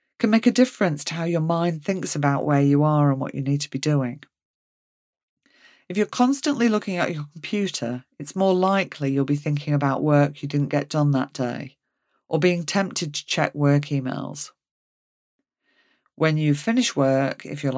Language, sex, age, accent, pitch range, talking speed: English, female, 40-59, British, 135-180 Hz, 180 wpm